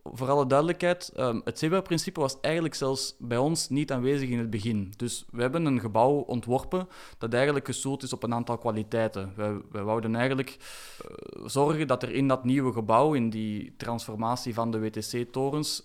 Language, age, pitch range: Dutch, 20-39, 115-140 Hz